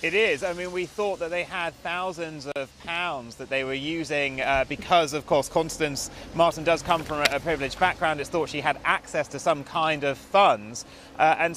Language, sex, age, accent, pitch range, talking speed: English, male, 30-49, British, 145-170 Hz, 205 wpm